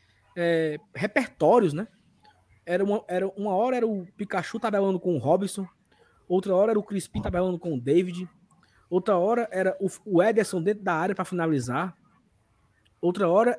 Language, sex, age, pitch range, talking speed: Portuguese, male, 20-39, 175-240 Hz, 160 wpm